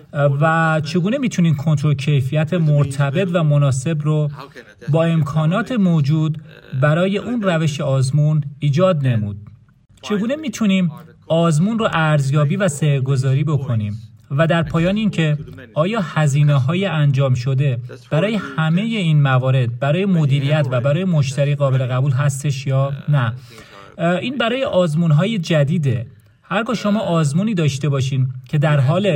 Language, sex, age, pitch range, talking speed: Persian, male, 40-59, 135-175 Hz, 125 wpm